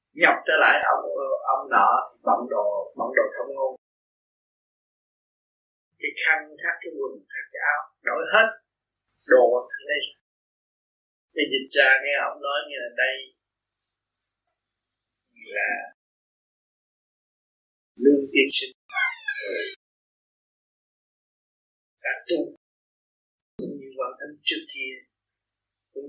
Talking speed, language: 110 wpm, Vietnamese